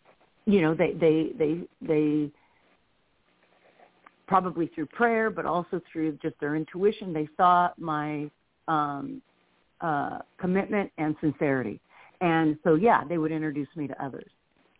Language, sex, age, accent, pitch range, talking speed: English, female, 50-69, American, 150-185 Hz, 130 wpm